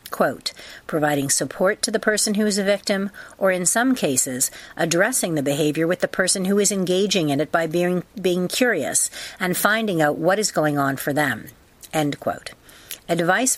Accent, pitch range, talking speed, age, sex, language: American, 150-195 Hz, 180 wpm, 50-69, female, English